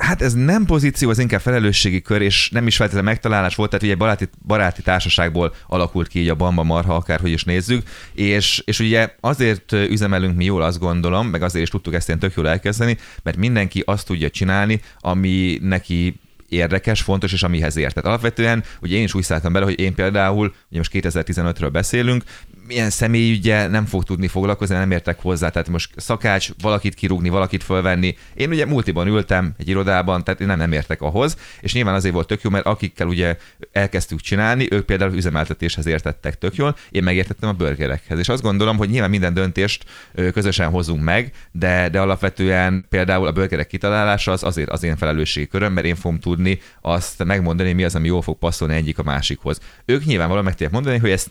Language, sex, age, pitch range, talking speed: Hungarian, male, 30-49, 85-105 Hz, 190 wpm